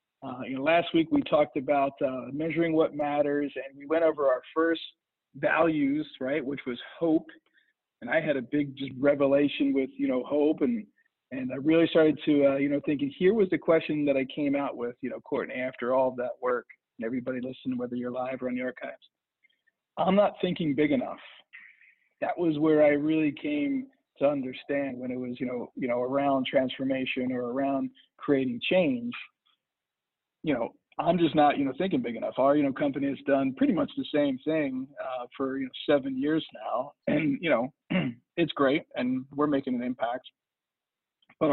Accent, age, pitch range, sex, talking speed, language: American, 50-69, 130-165 Hz, male, 195 wpm, English